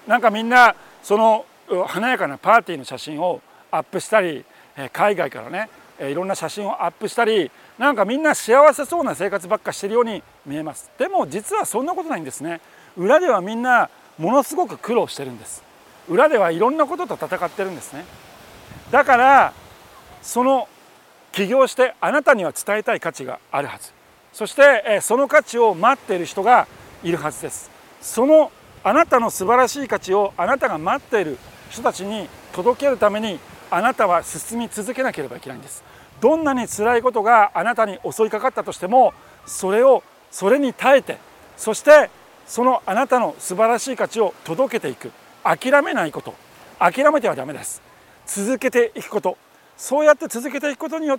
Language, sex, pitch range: Japanese, male, 195-275 Hz